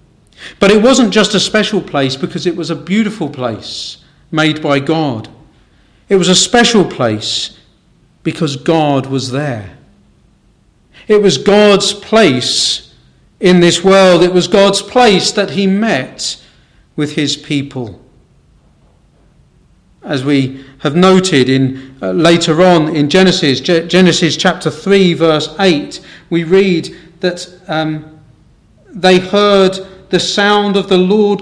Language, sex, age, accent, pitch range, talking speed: English, male, 40-59, British, 155-205 Hz, 130 wpm